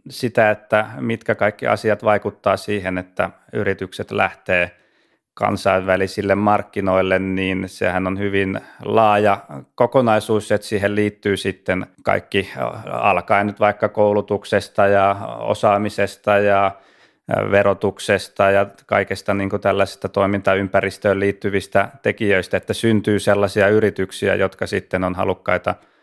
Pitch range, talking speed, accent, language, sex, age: 95-105 Hz, 105 wpm, native, Finnish, male, 30-49